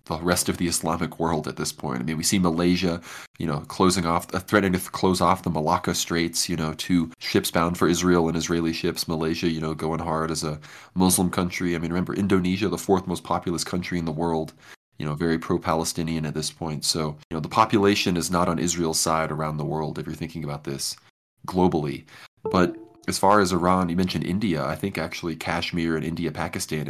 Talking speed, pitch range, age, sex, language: 220 wpm, 75-85 Hz, 20-39, male, English